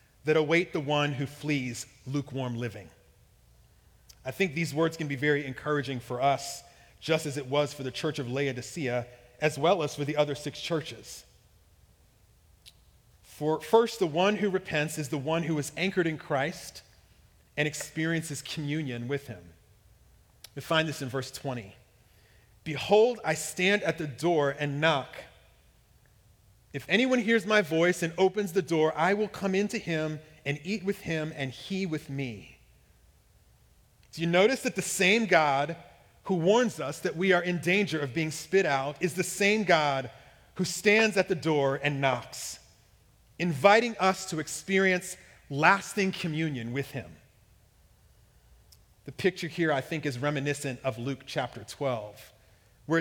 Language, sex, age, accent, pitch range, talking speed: English, male, 40-59, American, 130-180 Hz, 160 wpm